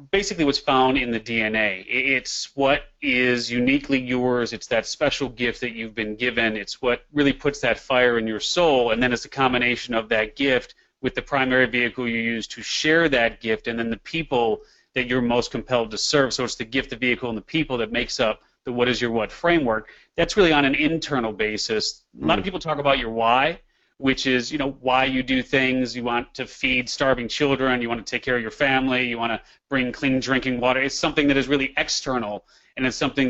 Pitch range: 125-145 Hz